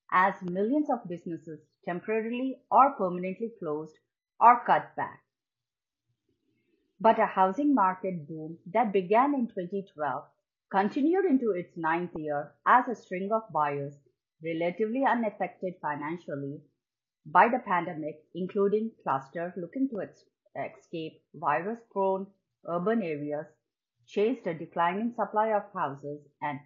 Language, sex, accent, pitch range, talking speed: English, female, Indian, 155-215 Hz, 115 wpm